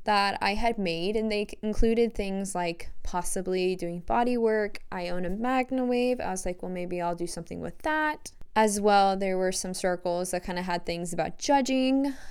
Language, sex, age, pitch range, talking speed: English, female, 10-29, 175-240 Hz, 195 wpm